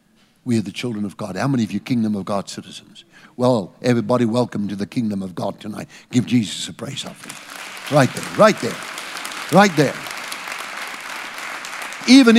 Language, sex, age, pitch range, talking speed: English, male, 60-79, 115-165 Hz, 170 wpm